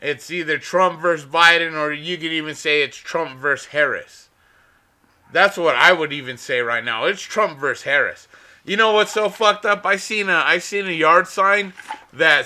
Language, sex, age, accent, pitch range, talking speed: English, male, 30-49, American, 135-180 Hz, 195 wpm